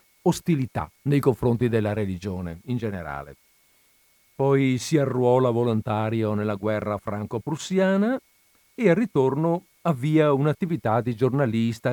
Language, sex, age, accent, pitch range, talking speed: Italian, male, 50-69, native, 110-140 Hz, 105 wpm